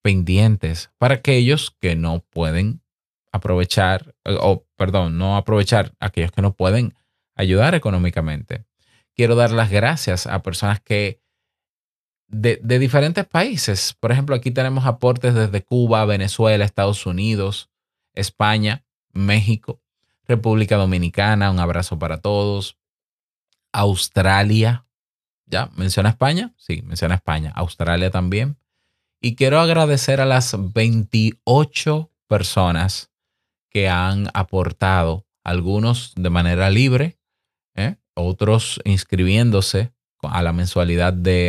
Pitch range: 95-120 Hz